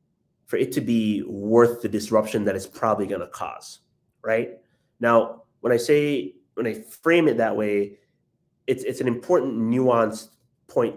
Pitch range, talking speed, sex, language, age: 110-140 Hz, 165 wpm, male, English, 30-49